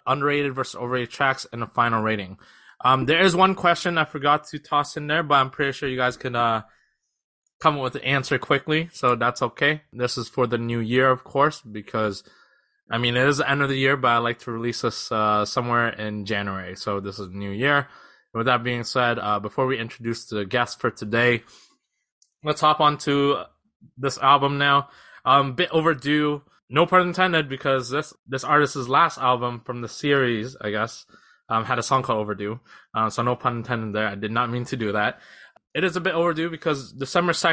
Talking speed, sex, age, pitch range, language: 210 wpm, male, 20-39, 115-145 Hz, English